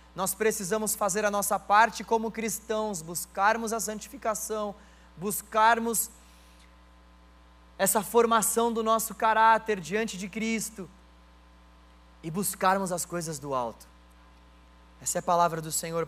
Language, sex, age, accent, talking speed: Portuguese, male, 20-39, Brazilian, 120 wpm